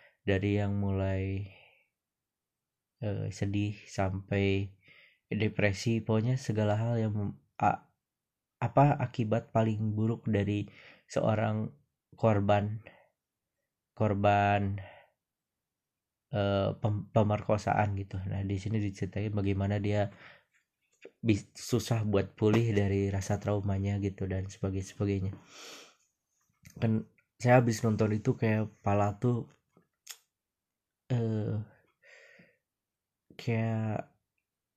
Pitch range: 100-115 Hz